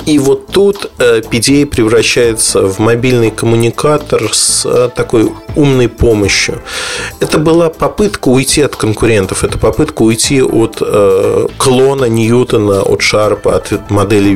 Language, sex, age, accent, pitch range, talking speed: Russian, male, 40-59, native, 110-140 Hz, 115 wpm